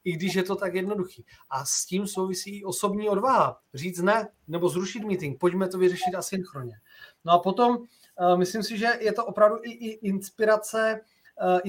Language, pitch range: Czech, 175-200 Hz